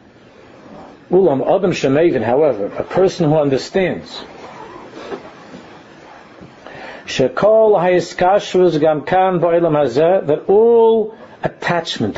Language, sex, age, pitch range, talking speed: English, male, 60-79, 120-170 Hz, 55 wpm